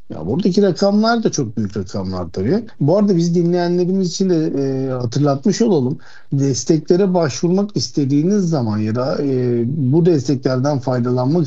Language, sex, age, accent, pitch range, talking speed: Turkish, male, 60-79, native, 125-180 Hz, 140 wpm